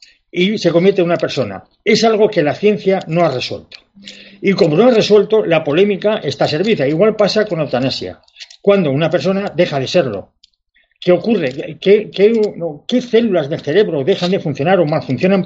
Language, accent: Spanish, Spanish